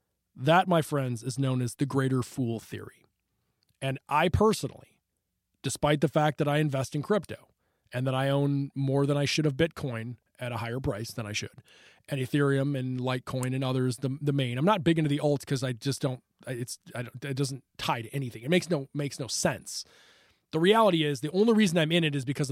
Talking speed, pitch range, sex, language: 220 wpm, 130-160 Hz, male, English